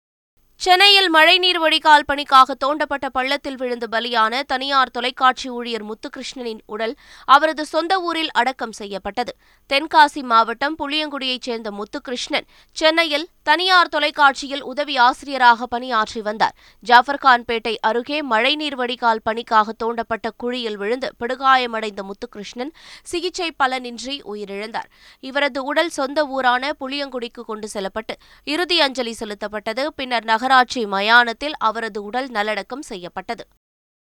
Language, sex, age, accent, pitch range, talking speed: Tamil, female, 20-39, native, 225-285 Hz, 105 wpm